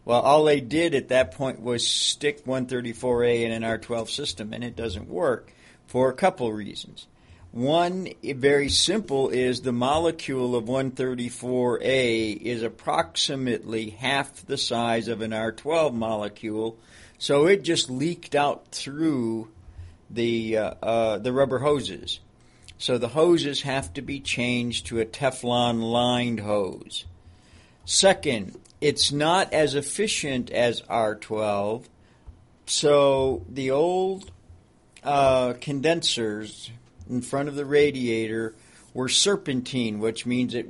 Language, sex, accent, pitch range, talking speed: English, male, American, 115-140 Hz, 125 wpm